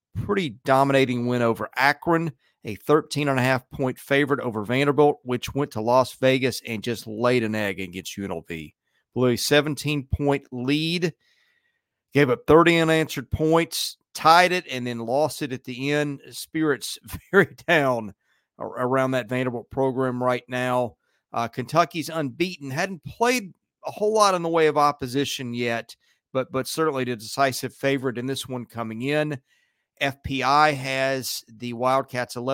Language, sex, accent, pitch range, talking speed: English, male, American, 115-145 Hz, 155 wpm